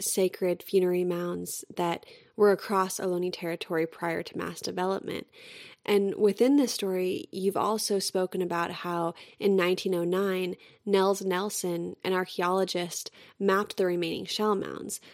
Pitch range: 180-205 Hz